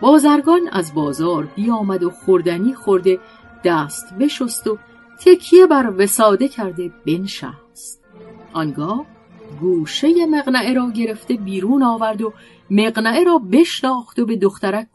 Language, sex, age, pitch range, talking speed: Persian, female, 40-59, 170-235 Hz, 120 wpm